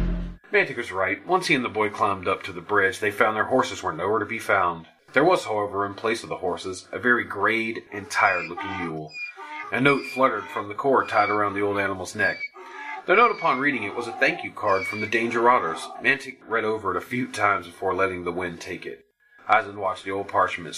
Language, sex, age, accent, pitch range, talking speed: English, male, 30-49, American, 95-140 Hz, 230 wpm